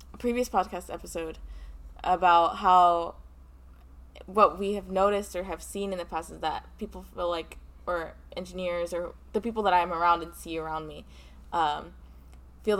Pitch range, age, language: 160-185 Hz, 20-39, English